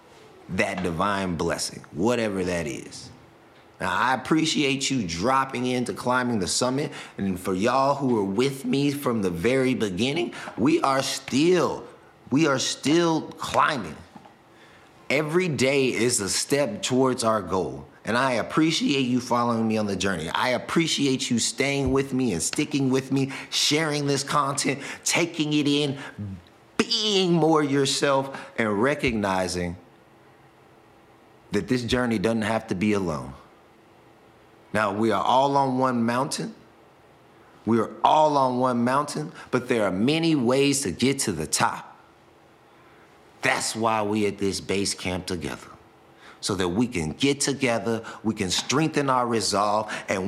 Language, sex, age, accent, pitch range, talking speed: English, male, 30-49, American, 105-140 Hz, 145 wpm